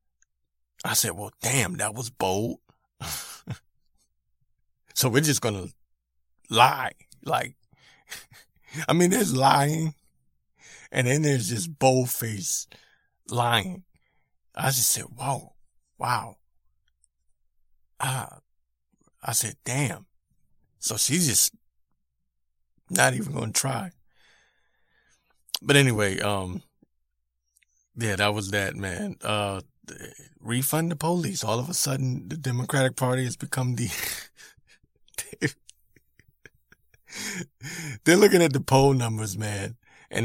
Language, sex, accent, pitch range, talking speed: English, male, American, 85-135 Hz, 105 wpm